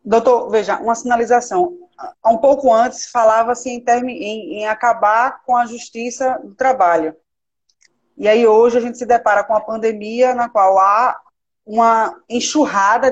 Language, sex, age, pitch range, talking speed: Portuguese, female, 20-39, 200-245 Hz, 140 wpm